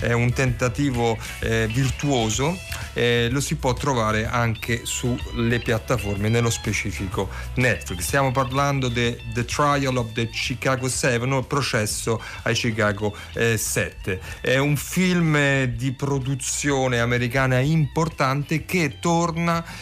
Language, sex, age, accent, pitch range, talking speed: Italian, male, 40-59, native, 115-140 Hz, 120 wpm